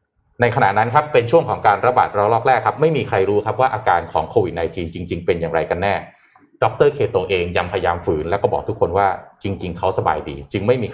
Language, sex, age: Thai, male, 20-39